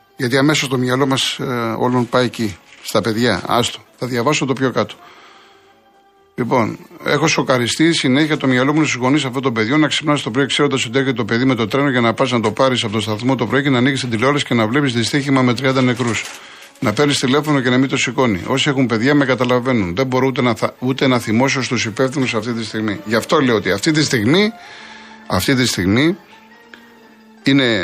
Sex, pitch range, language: male, 120-160 Hz, Greek